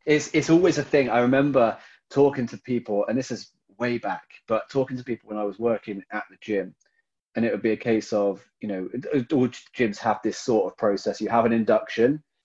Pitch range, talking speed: 110-145 Hz, 220 wpm